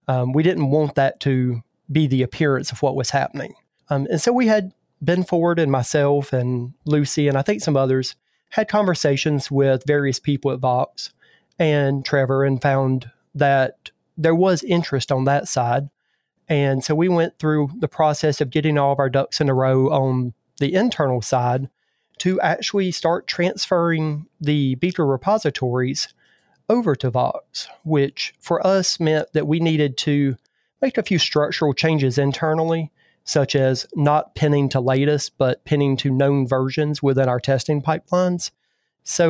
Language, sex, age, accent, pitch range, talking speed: English, male, 30-49, American, 135-160 Hz, 165 wpm